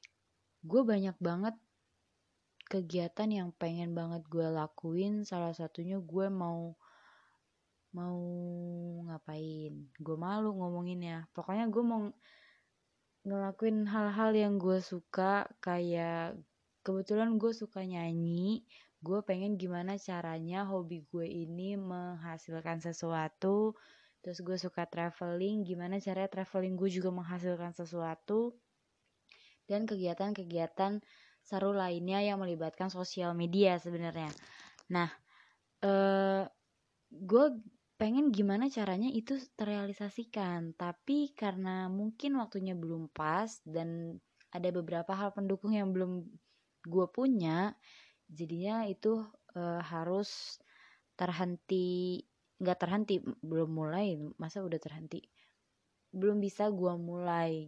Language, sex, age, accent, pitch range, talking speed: Indonesian, female, 20-39, native, 170-205 Hz, 105 wpm